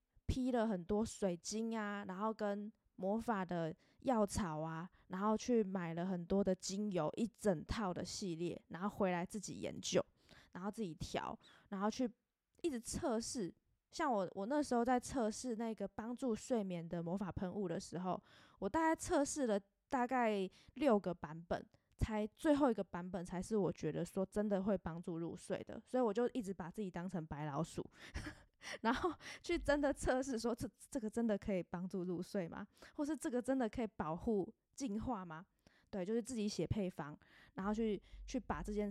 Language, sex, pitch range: Chinese, female, 180-235 Hz